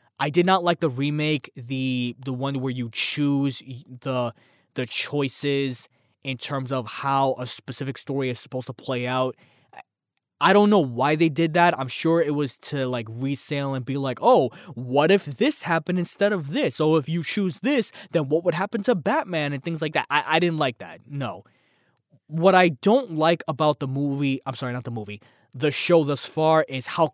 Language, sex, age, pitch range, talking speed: English, male, 20-39, 130-160 Hz, 200 wpm